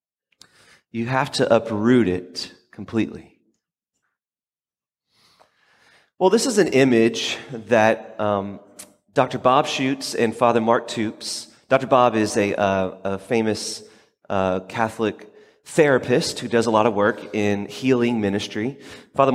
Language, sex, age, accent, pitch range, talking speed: English, male, 30-49, American, 115-145 Hz, 125 wpm